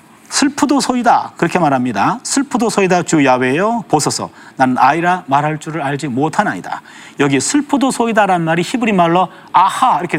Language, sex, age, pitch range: Korean, male, 40-59, 165-235 Hz